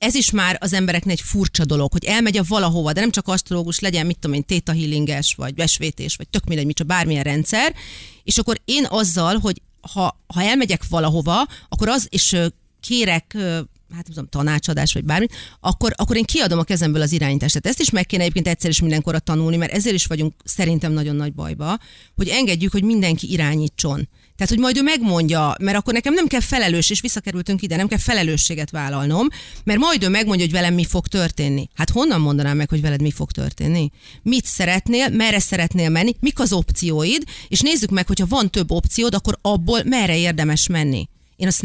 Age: 40-59